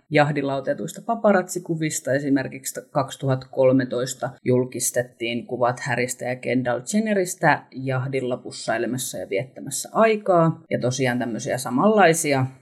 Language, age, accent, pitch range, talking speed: Finnish, 30-49, native, 130-165 Hz, 95 wpm